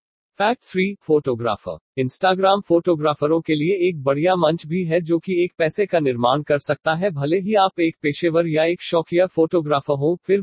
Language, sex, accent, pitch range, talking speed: Hindi, male, native, 145-185 Hz, 185 wpm